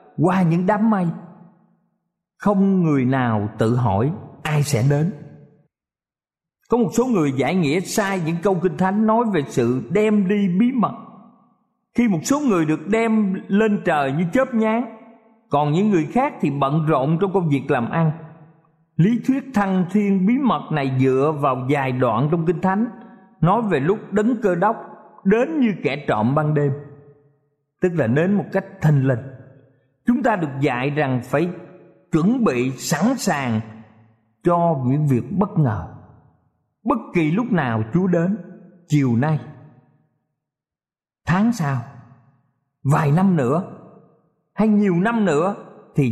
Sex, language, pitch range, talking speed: male, Vietnamese, 135-205 Hz, 155 wpm